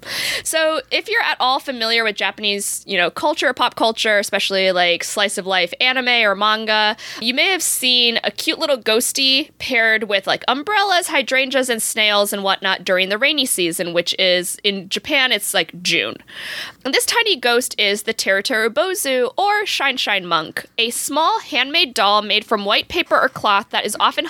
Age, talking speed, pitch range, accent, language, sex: 20-39, 185 wpm, 205-290 Hz, American, English, female